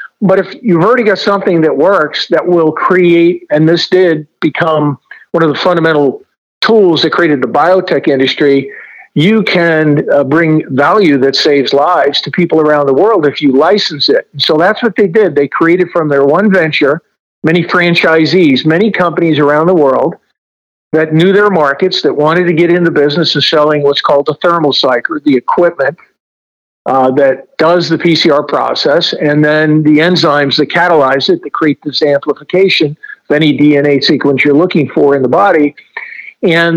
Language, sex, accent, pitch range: English, male, American, 145-175 Hz